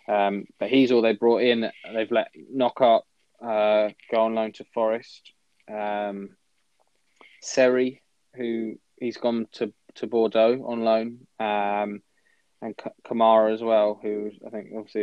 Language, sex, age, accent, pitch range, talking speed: English, male, 20-39, British, 105-115 Hz, 145 wpm